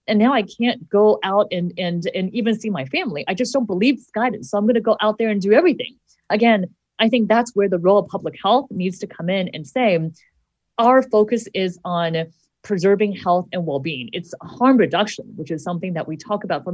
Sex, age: female, 30-49